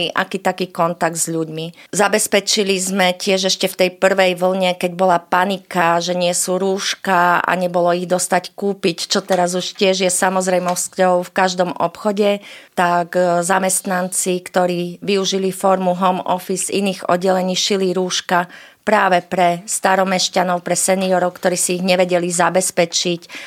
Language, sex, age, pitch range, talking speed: Slovak, female, 30-49, 180-190 Hz, 140 wpm